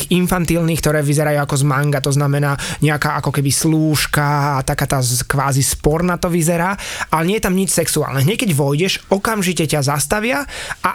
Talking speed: 170 wpm